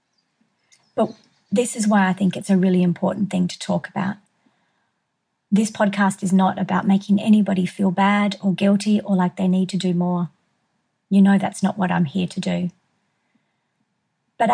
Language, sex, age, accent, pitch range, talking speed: English, female, 40-59, Australian, 190-210 Hz, 175 wpm